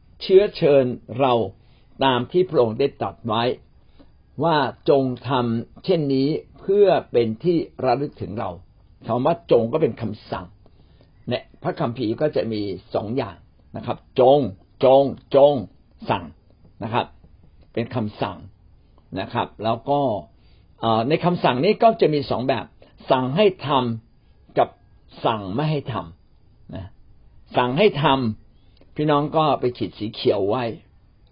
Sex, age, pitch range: male, 60-79, 100-135 Hz